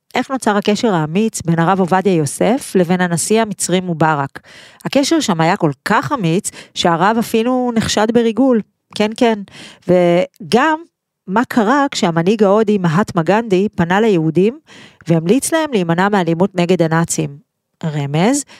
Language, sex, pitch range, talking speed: Hebrew, female, 165-210 Hz, 130 wpm